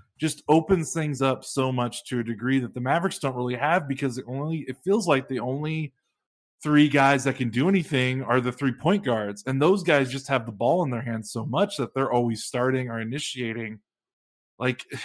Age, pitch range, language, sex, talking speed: 20-39, 115-140 Hz, English, male, 210 wpm